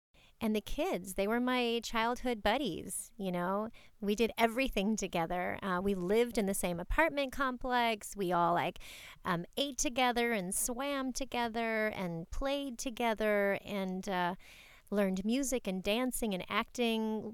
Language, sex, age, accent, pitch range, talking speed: English, female, 30-49, American, 185-235 Hz, 145 wpm